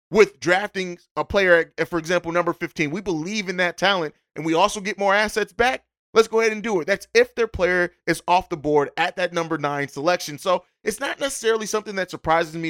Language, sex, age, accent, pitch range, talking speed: English, male, 30-49, American, 165-195 Hz, 225 wpm